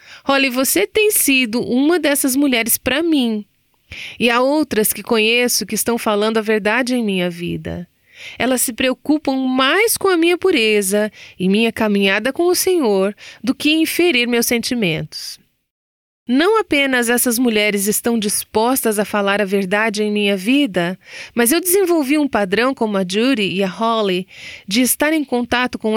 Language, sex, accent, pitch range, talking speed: Portuguese, female, Brazilian, 195-275 Hz, 165 wpm